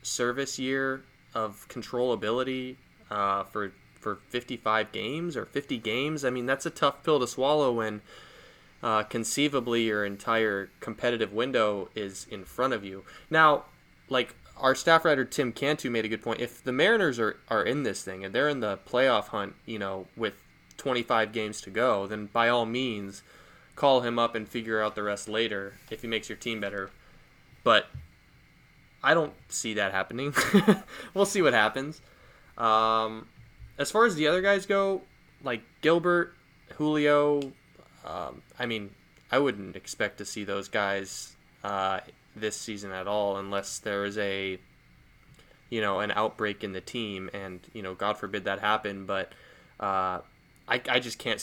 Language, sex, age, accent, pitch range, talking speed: English, male, 20-39, American, 100-130 Hz, 165 wpm